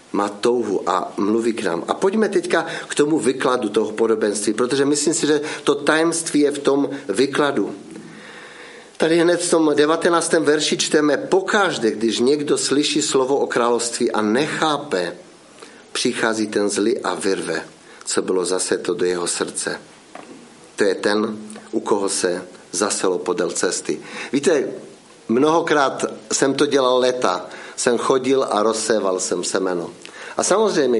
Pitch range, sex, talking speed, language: 115-165 Hz, male, 140 wpm, Czech